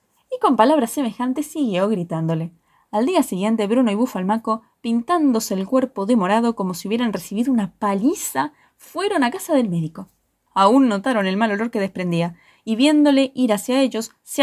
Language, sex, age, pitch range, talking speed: Spanish, female, 20-39, 210-300 Hz, 165 wpm